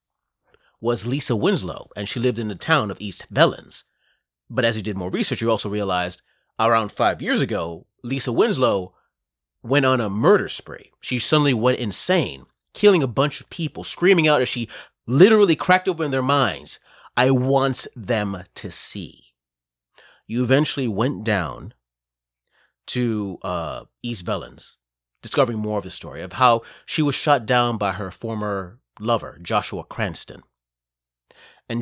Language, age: English, 30-49